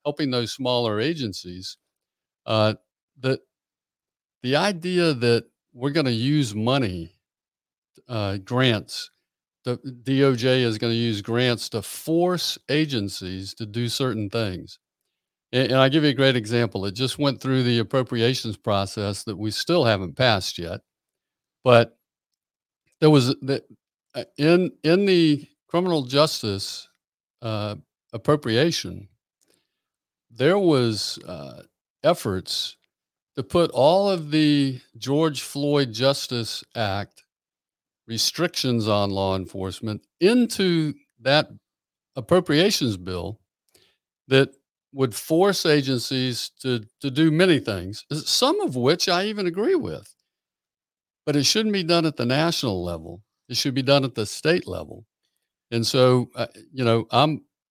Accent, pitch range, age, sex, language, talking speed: American, 110-150 Hz, 50-69, male, English, 125 wpm